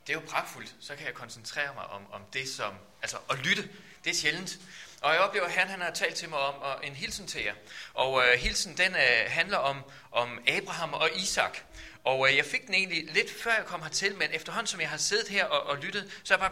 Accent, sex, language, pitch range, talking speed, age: native, male, Danish, 145-200 Hz, 255 wpm, 30-49